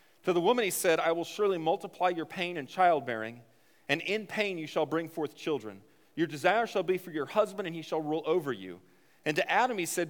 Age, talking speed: 40-59, 230 wpm